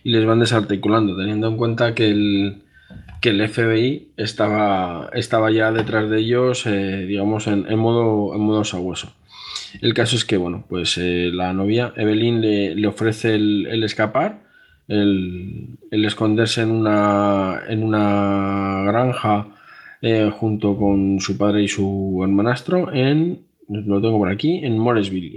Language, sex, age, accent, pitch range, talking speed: Spanish, male, 20-39, Spanish, 100-115 Hz, 155 wpm